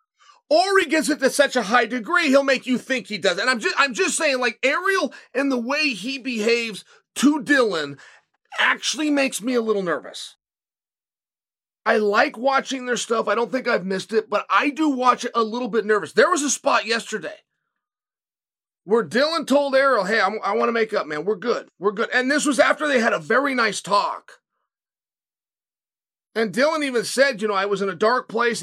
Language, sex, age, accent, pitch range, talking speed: English, male, 30-49, American, 205-275 Hz, 205 wpm